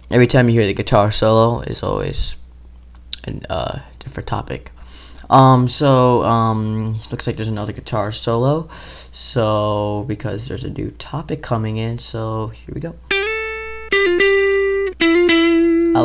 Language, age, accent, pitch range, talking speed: English, 20-39, American, 105-135 Hz, 130 wpm